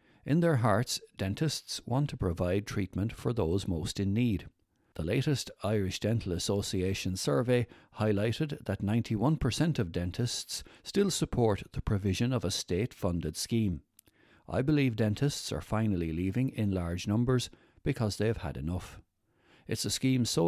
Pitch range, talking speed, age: 90-115 Hz, 145 wpm, 60-79